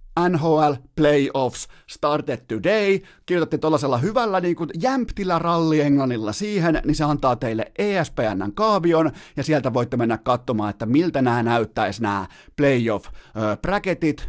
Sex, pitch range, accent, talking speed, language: male, 110-155 Hz, native, 130 wpm, Finnish